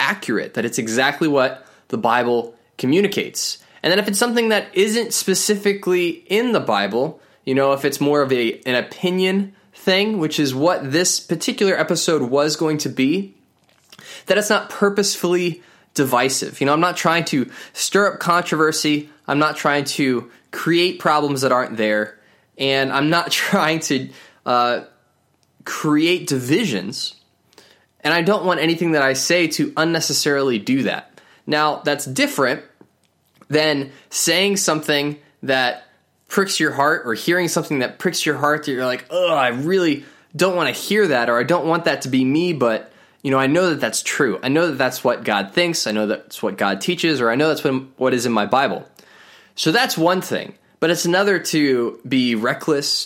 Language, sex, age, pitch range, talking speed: English, male, 10-29, 135-175 Hz, 180 wpm